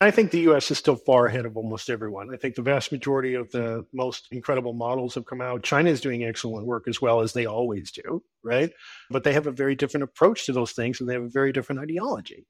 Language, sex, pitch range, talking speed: English, male, 125-155 Hz, 255 wpm